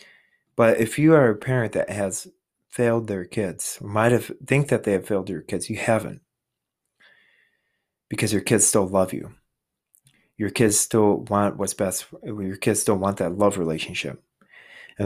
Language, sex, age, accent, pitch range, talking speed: English, male, 30-49, American, 95-115 Hz, 170 wpm